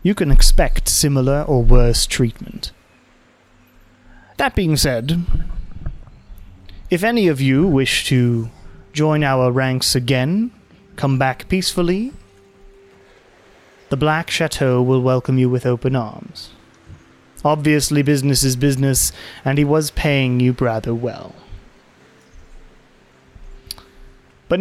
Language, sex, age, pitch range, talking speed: English, male, 30-49, 120-150 Hz, 105 wpm